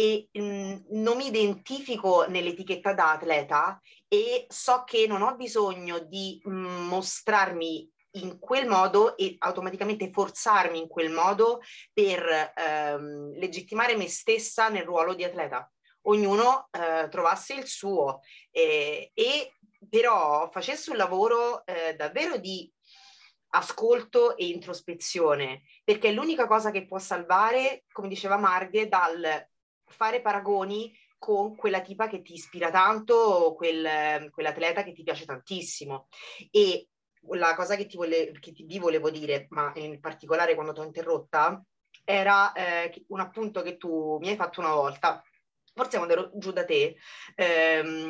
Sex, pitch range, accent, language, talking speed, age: female, 165-230 Hz, native, Italian, 140 wpm, 30-49